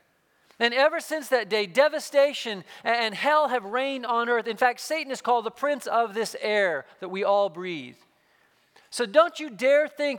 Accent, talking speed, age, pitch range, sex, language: American, 185 wpm, 40-59, 220-280 Hz, male, English